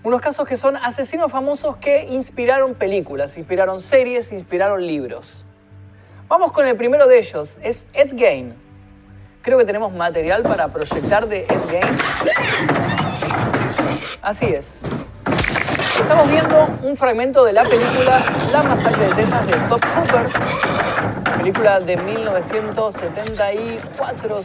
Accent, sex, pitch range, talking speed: Argentinian, male, 185-280 Hz, 125 wpm